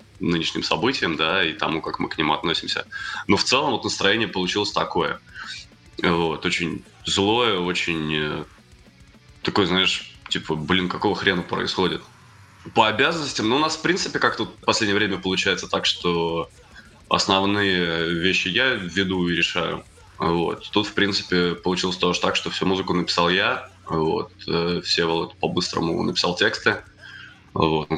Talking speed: 150 wpm